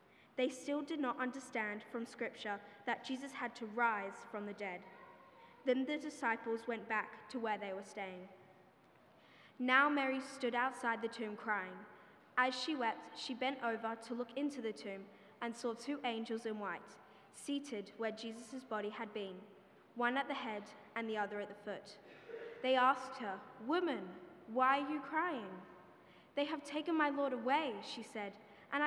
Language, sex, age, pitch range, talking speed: English, female, 20-39, 210-265 Hz, 170 wpm